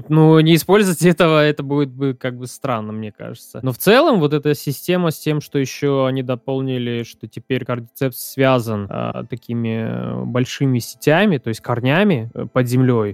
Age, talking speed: 20-39, 175 wpm